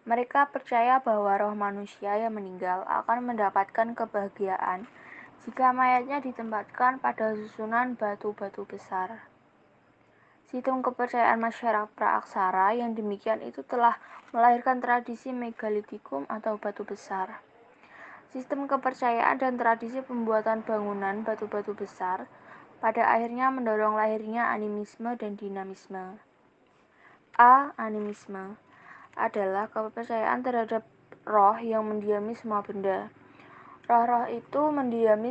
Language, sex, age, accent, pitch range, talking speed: Indonesian, female, 20-39, native, 205-235 Hz, 100 wpm